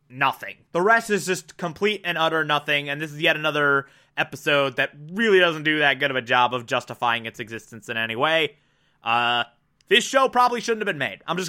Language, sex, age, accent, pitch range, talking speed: English, male, 20-39, American, 140-190 Hz, 215 wpm